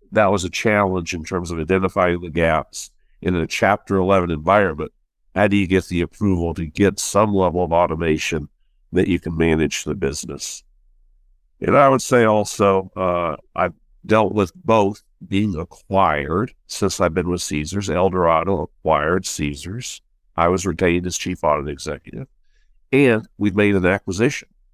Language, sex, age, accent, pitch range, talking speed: English, male, 60-79, American, 80-100 Hz, 160 wpm